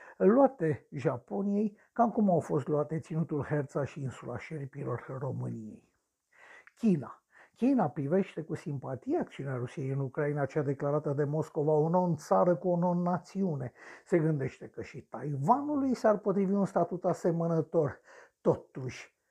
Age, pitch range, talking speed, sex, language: 60-79, 145-200 Hz, 130 wpm, male, Romanian